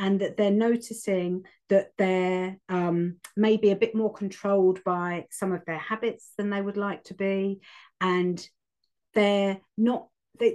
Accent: British